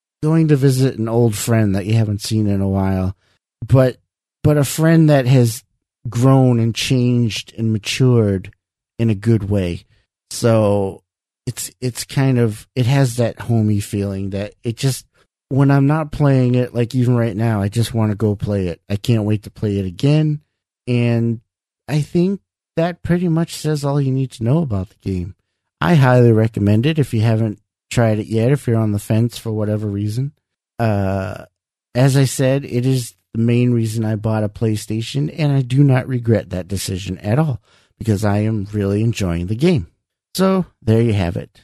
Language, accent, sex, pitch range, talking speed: English, American, male, 100-130 Hz, 190 wpm